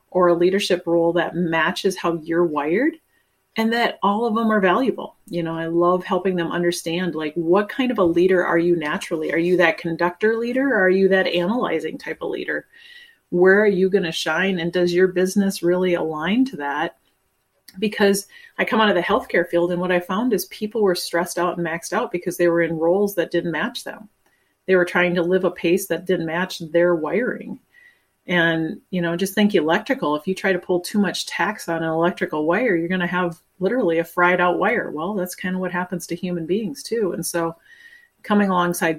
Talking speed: 215 wpm